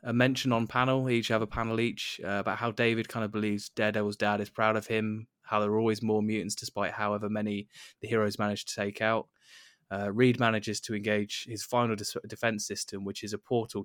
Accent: British